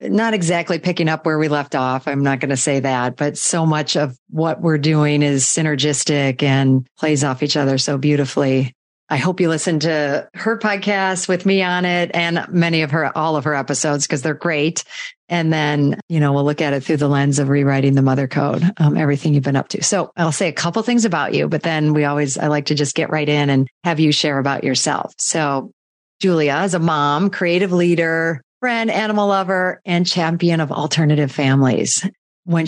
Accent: American